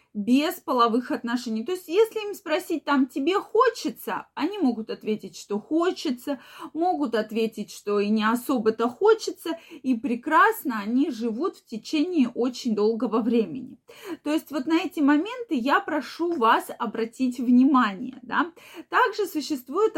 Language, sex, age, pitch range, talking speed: Russian, female, 20-39, 235-320 Hz, 135 wpm